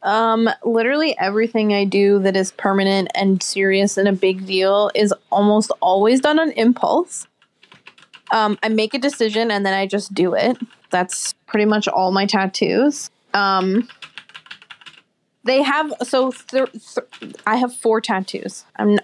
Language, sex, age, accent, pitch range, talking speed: English, female, 20-39, American, 195-245 Hz, 145 wpm